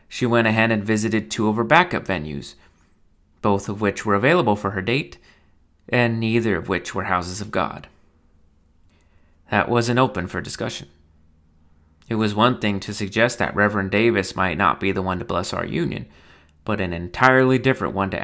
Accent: American